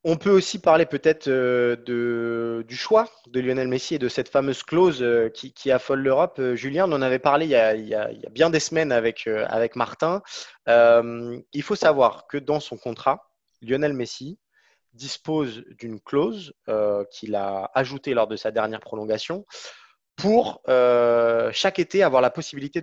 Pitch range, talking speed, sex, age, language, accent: 115-160 Hz, 170 wpm, male, 20-39, French, French